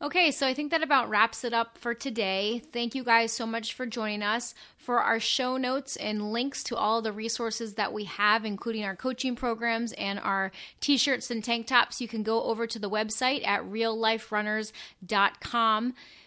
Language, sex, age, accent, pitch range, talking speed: English, female, 30-49, American, 210-260 Hz, 190 wpm